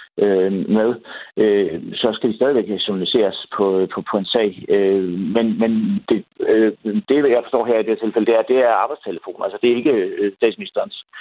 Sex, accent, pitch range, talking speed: male, native, 100-145 Hz, 165 wpm